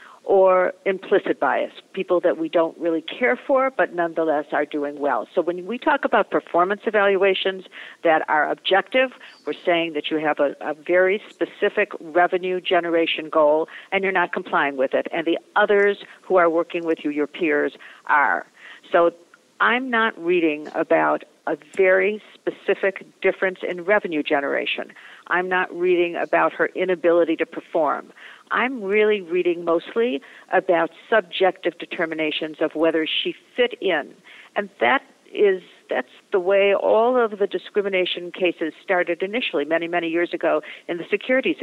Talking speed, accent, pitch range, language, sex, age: 150 wpm, American, 165-210 Hz, English, female, 50-69